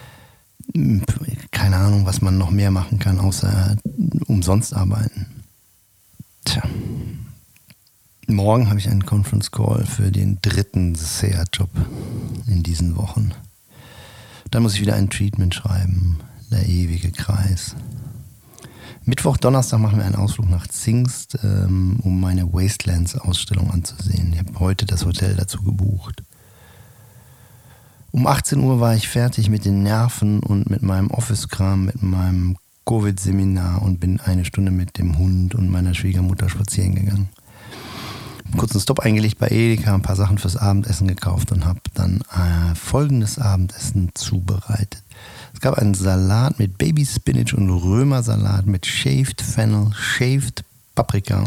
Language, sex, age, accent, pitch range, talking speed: German, male, 40-59, German, 95-115 Hz, 135 wpm